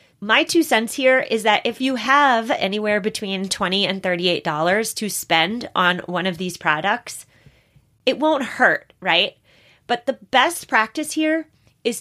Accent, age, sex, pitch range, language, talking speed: American, 30-49, female, 170-230 Hz, English, 155 wpm